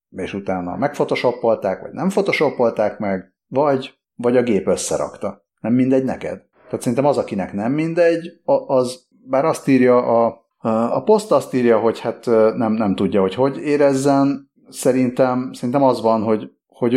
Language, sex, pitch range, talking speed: Hungarian, male, 100-130 Hz, 150 wpm